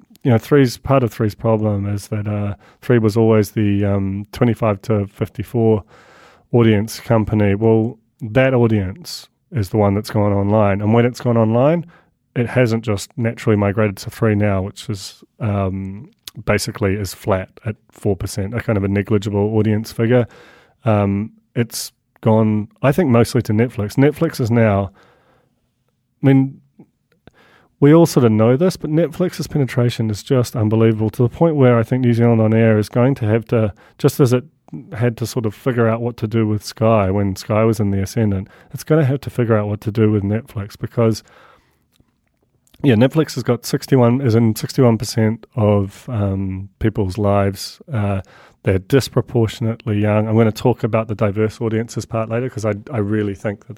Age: 30-49